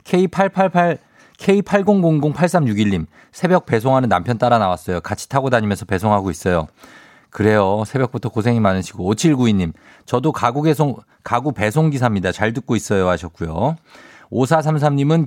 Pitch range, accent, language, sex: 105-150 Hz, native, Korean, male